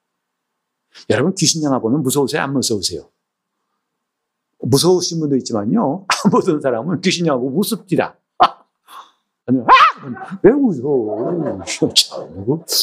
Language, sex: Korean, male